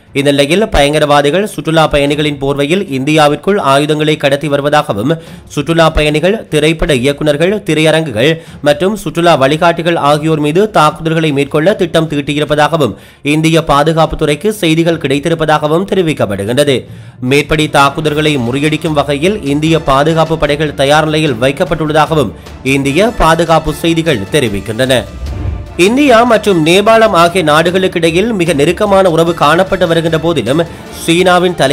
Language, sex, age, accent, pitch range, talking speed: English, male, 30-49, Indian, 145-170 Hz, 95 wpm